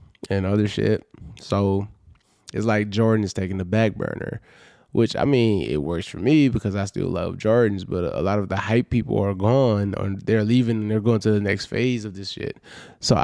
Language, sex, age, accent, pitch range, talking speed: English, male, 20-39, American, 100-120 Hz, 215 wpm